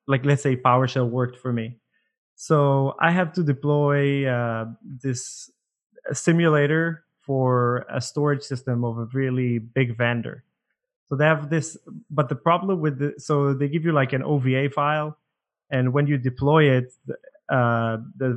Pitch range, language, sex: 125-145 Hz, English, male